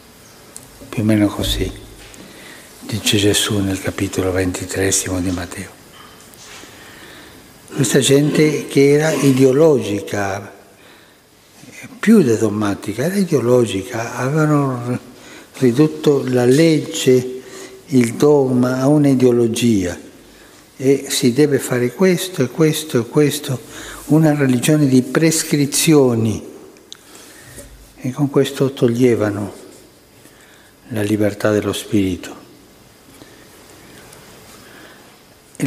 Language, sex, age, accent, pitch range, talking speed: Italian, male, 60-79, native, 110-140 Hz, 85 wpm